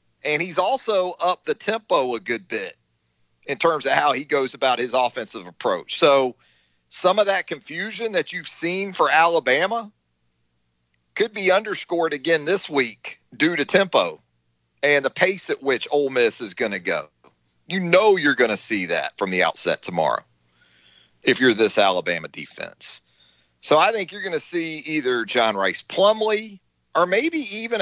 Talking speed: 170 wpm